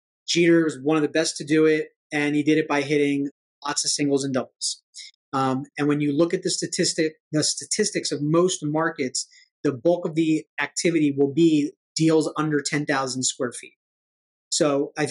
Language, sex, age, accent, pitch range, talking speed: English, male, 30-49, American, 140-160 Hz, 190 wpm